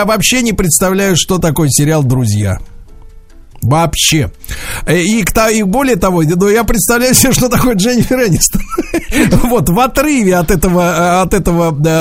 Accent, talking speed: native, 135 wpm